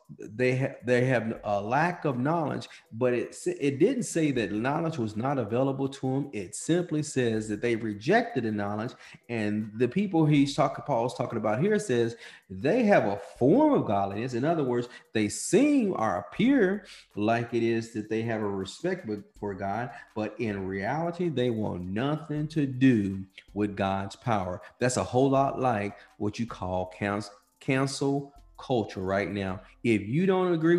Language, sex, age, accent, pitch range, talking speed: English, male, 40-59, American, 100-140 Hz, 180 wpm